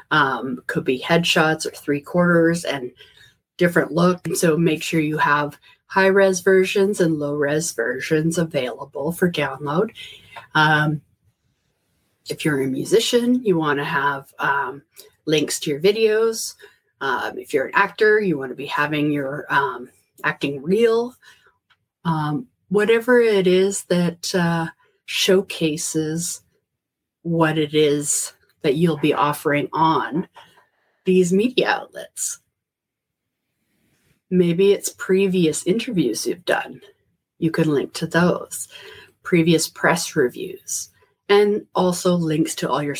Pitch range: 150-200 Hz